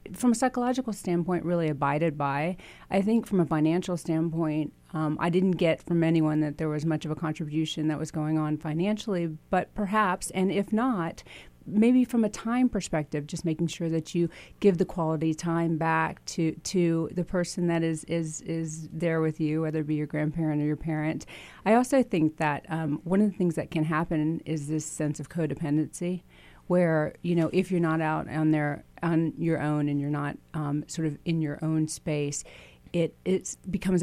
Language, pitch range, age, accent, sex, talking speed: English, 155-175 Hz, 40-59, American, female, 200 wpm